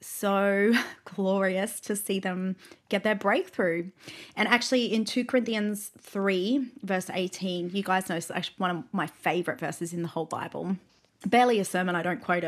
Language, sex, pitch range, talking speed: English, female, 185-210 Hz, 175 wpm